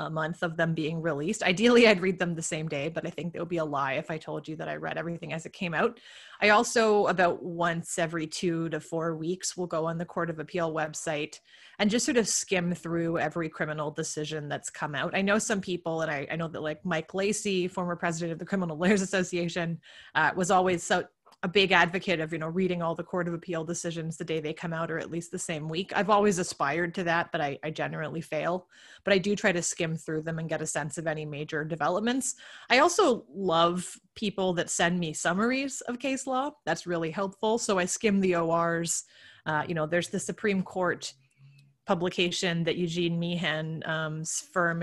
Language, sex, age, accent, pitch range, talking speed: English, female, 30-49, American, 160-190 Hz, 220 wpm